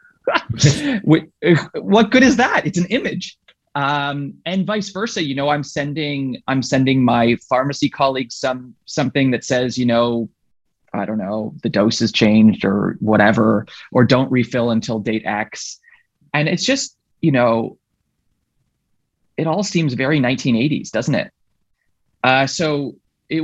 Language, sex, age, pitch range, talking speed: English, male, 20-39, 115-155 Hz, 145 wpm